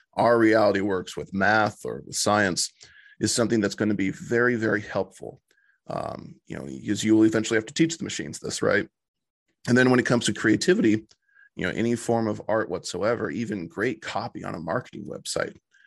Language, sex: English, male